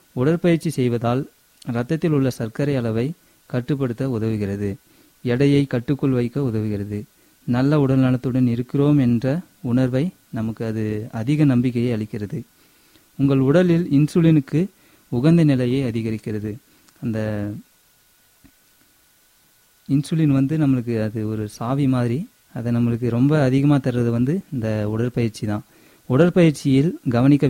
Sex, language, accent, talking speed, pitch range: male, Tamil, native, 105 wpm, 115-140 Hz